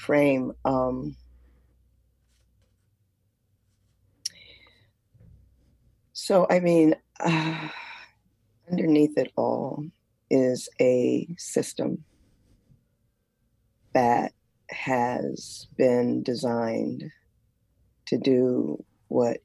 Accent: American